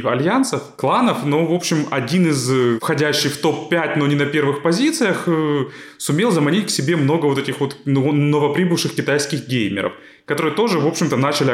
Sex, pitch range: male, 120-155 Hz